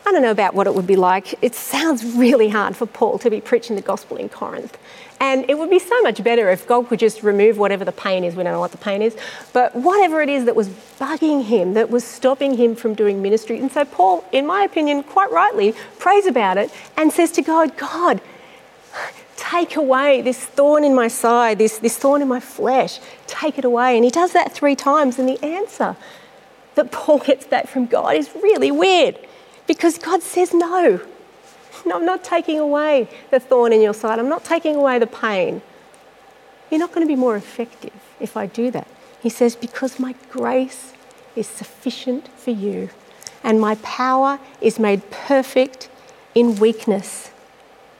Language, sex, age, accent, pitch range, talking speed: English, female, 40-59, Australian, 230-295 Hz, 195 wpm